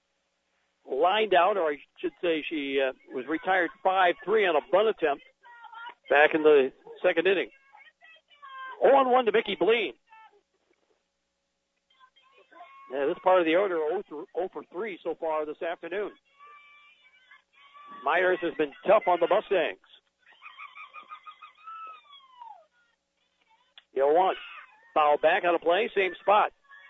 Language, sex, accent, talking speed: English, male, American, 115 wpm